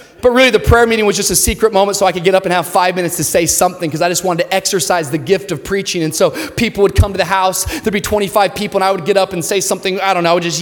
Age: 30-49